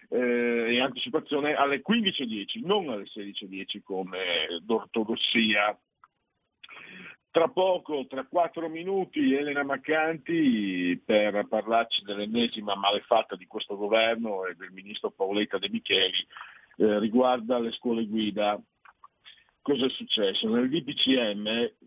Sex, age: male, 50-69